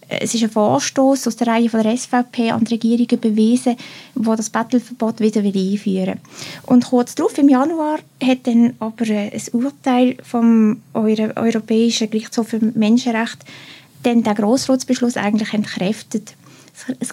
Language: German